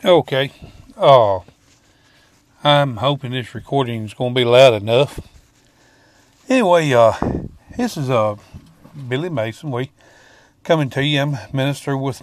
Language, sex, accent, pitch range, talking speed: English, male, American, 115-145 Hz, 130 wpm